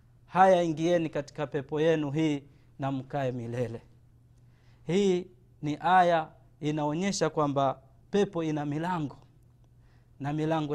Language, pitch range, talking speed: Swahili, 125-175 Hz, 105 wpm